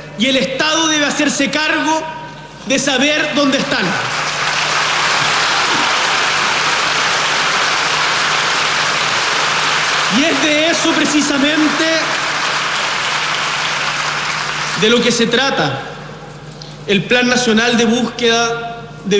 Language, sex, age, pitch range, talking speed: Spanish, male, 40-59, 160-235 Hz, 80 wpm